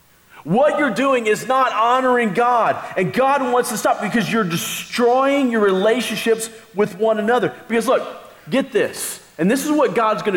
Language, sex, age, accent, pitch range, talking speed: English, male, 40-59, American, 160-240 Hz, 175 wpm